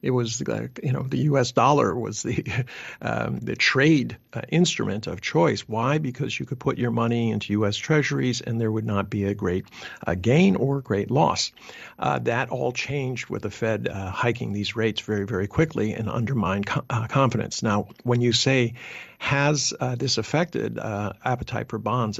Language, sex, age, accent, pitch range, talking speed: English, male, 50-69, American, 110-130 Hz, 185 wpm